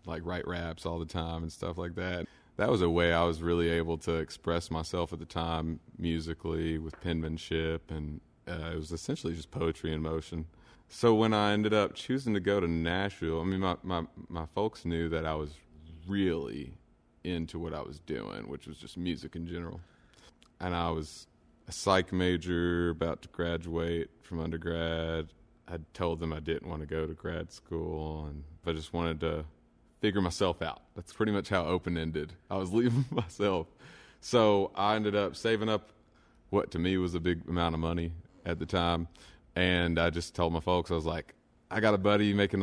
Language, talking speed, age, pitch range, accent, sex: English, 195 wpm, 30-49, 80-95 Hz, American, male